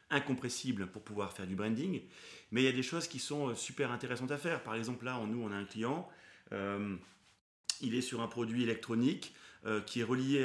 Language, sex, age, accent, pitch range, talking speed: French, male, 30-49, French, 110-135 Hz, 210 wpm